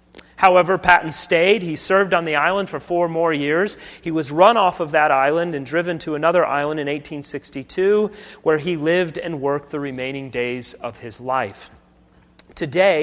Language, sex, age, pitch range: English, male, 30-49, 135-185 Hz